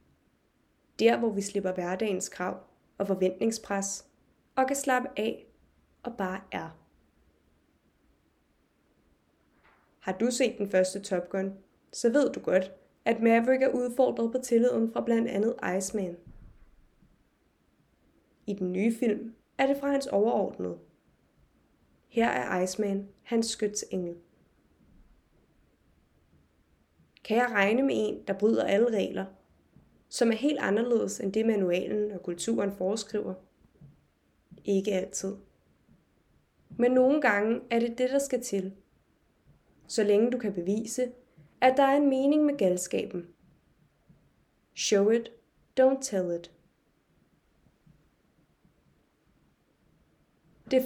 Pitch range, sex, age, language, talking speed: 180-235 Hz, female, 20-39, Danish, 115 wpm